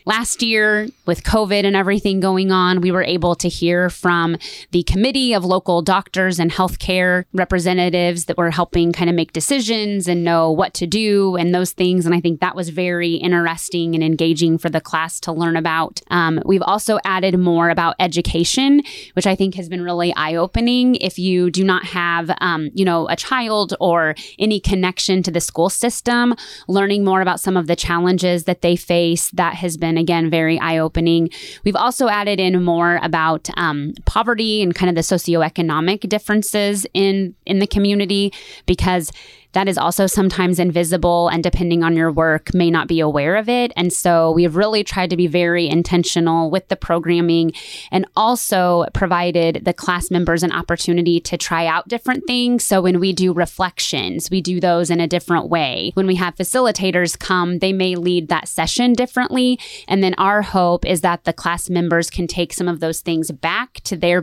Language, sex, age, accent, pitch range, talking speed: English, female, 20-39, American, 170-195 Hz, 190 wpm